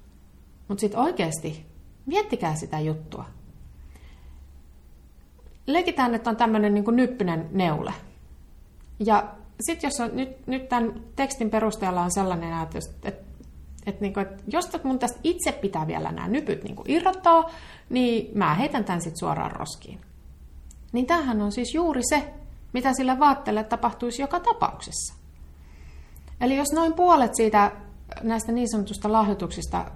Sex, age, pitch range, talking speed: female, 30-49, 165-265 Hz, 130 wpm